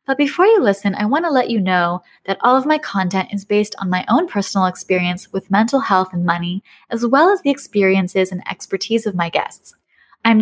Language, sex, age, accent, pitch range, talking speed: English, female, 20-39, American, 185-250 Hz, 220 wpm